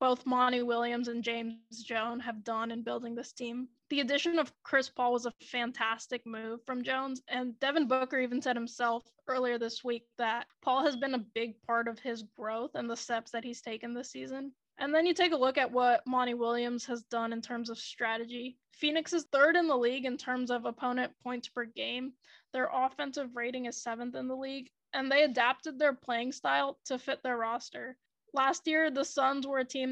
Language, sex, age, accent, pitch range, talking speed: English, female, 10-29, American, 235-270 Hz, 210 wpm